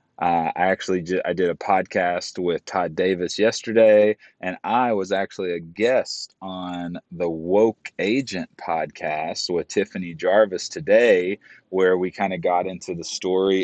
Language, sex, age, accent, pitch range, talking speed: English, male, 30-49, American, 90-105 Hz, 150 wpm